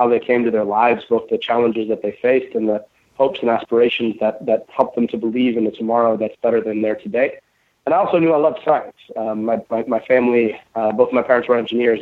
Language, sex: English, male